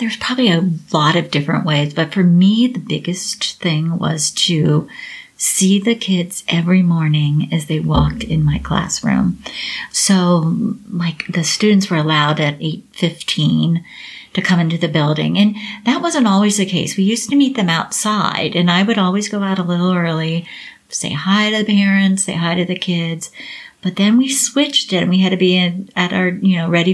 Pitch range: 175-210 Hz